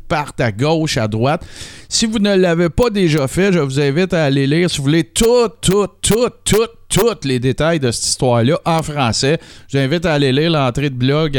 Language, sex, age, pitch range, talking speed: French, male, 50-69, 110-155 Hz, 220 wpm